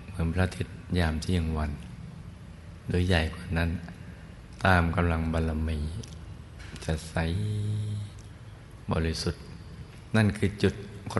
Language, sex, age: Thai, male, 60-79